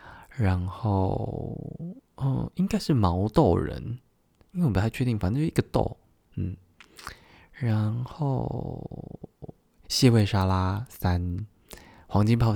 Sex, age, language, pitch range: male, 20-39, Chinese, 90-120 Hz